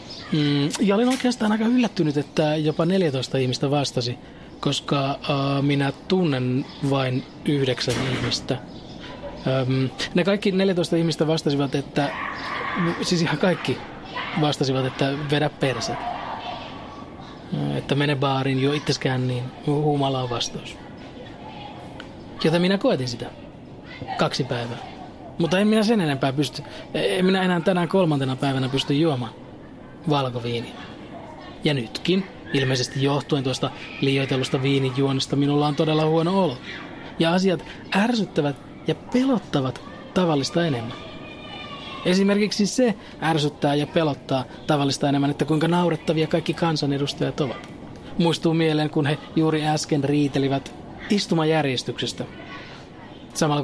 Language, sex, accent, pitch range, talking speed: Finnish, male, native, 135-165 Hz, 115 wpm